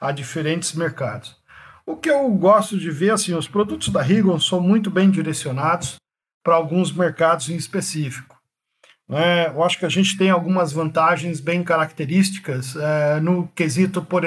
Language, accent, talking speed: English, Brazilian, 160 wpm